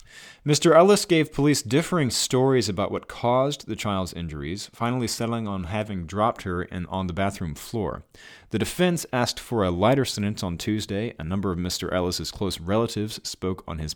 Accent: American